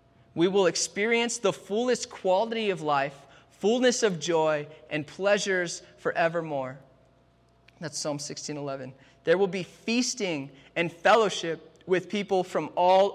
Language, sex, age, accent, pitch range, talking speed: English, male, 20-39, American, 145-185 Hz, 125 wpm